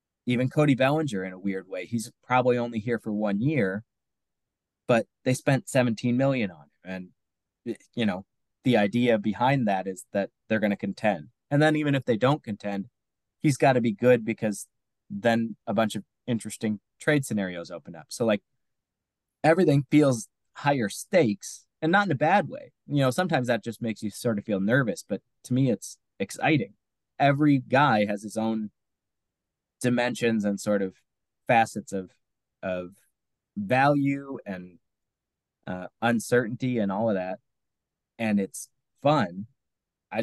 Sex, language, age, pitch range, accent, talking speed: male, English, 20-39, 100-130 Hz, American, 160 wpm